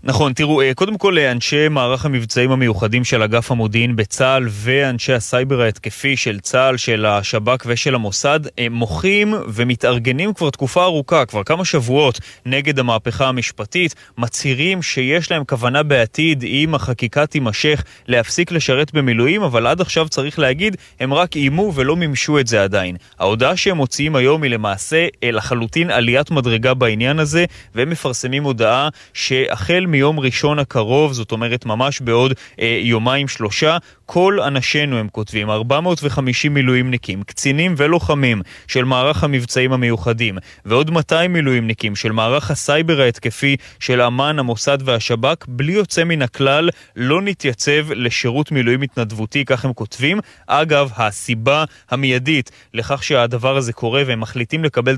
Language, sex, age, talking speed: Hebrew, male, 20-39, 140 wpm